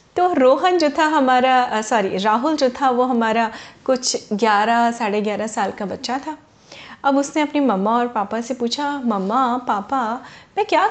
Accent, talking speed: native, 170 wpm